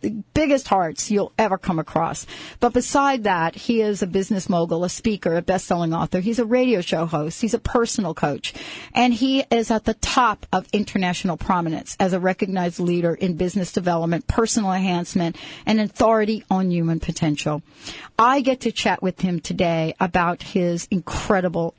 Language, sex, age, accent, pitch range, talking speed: English, female, 40-59, American, 175-225 Hz, 170 wpm